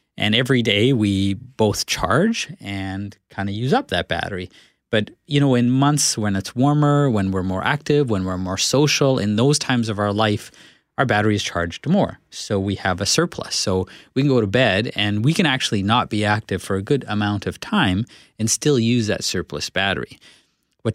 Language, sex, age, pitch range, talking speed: English, male, 30-49, 95-125 Hz, 205 wpm